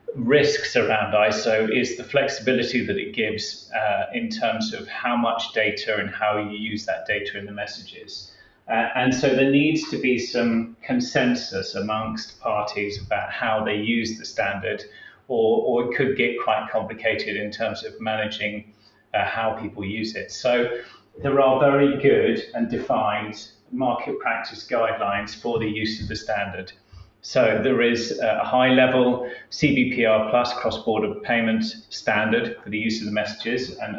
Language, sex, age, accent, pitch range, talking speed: English, male, 30-49, British, 105-130 Hz, 160 wpm